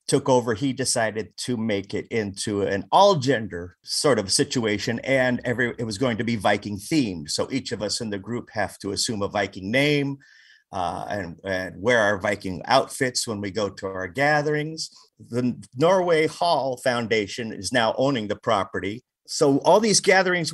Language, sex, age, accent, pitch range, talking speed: English, male, 50-69, American, 110-150 Hz, 175 wpm